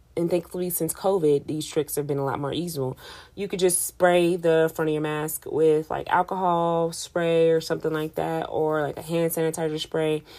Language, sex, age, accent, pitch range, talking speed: English, female, 30-49, American, 150-185 Hz, 200 wpm